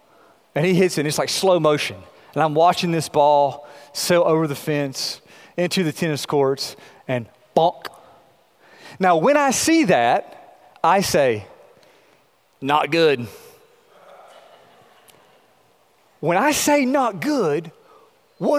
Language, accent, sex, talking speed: English, American, male, 125 wpm